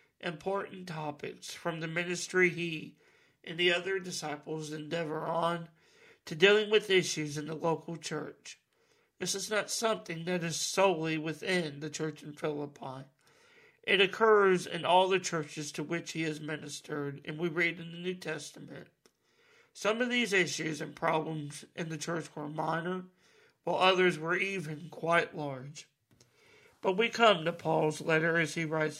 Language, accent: English, American